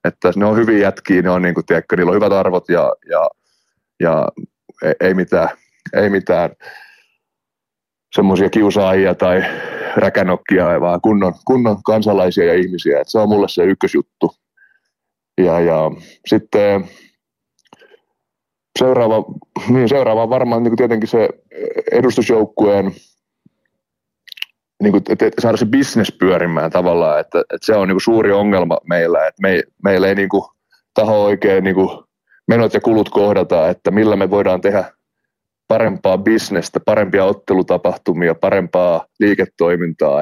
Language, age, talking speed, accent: Finnish, 30-49, 130 wpm, native